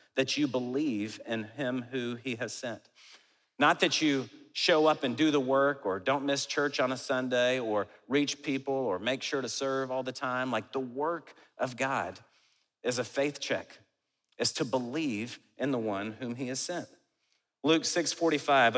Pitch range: 125-145 Hz